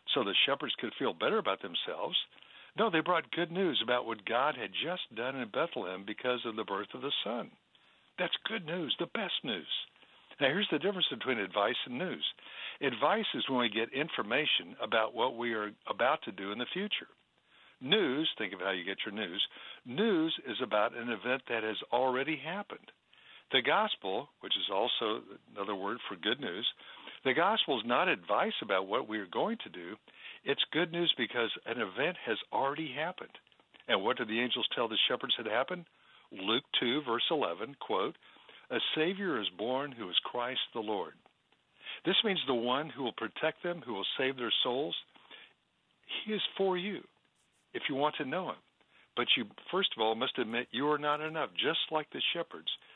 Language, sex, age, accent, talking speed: English, male, 60-79, American, 190 wpm